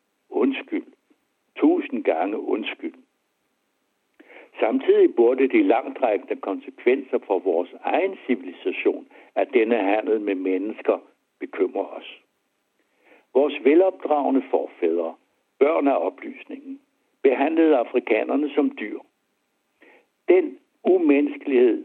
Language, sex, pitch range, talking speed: Danish, male, 265-380 Hz, 90 wpm